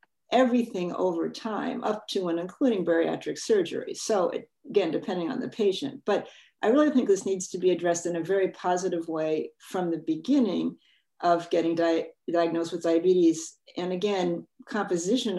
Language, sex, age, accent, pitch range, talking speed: English, female, 50-69, American, 165-215 Hz, 155 wpm